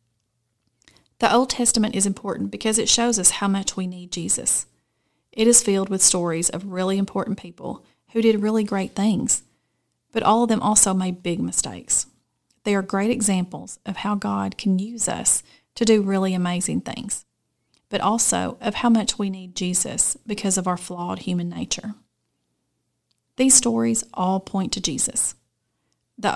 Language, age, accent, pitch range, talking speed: English, 30-49, American, 180-220 Hz, 165 wpm